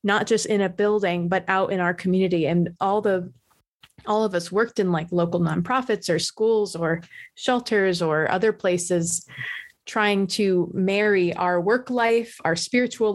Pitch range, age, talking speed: 175-210 Hz, 30-49, 165 wpm